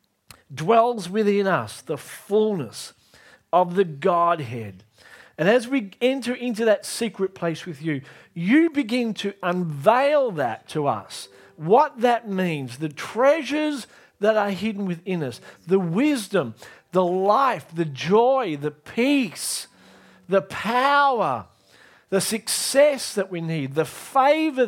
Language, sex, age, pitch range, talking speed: English, male, 50-69, 155-215 Hz, 125 wpm